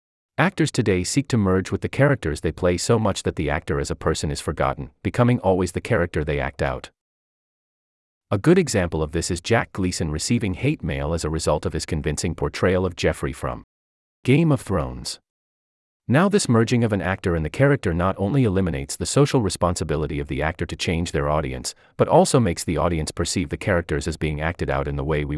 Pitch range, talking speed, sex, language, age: 75-115 Hz, 210 wpm, male, English, 40-59